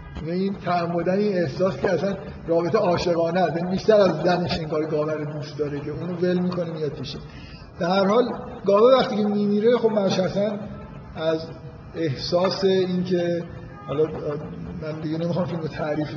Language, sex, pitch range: Persian, male, 150-185 Hz